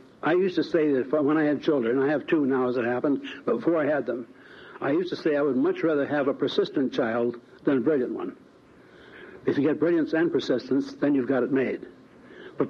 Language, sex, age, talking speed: English, male, 60-79, 230 wpm